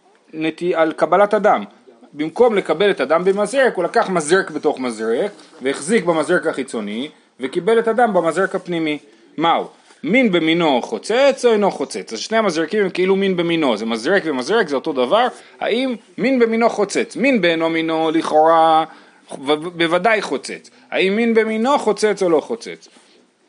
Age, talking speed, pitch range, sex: 30-49, 155 wpm, 155-220 Hz, male